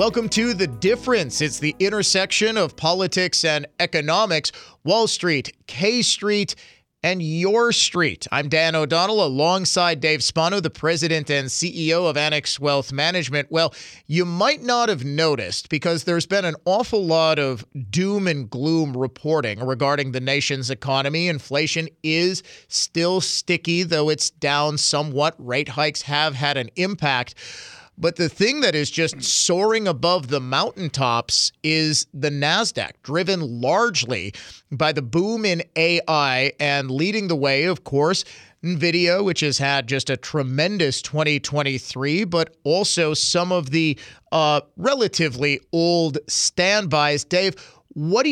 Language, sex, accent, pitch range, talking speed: English, male, American, 145-180 Hz, 140 wpm